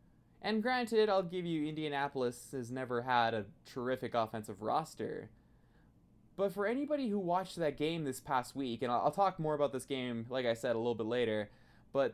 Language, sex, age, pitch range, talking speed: English, male, 20-39, 120-175 Hz, 190 wpm